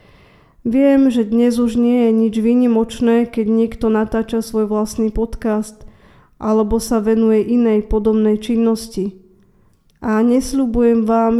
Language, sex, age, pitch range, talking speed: Slovak, female, 20-39, 215-235 Hz, 120 wpm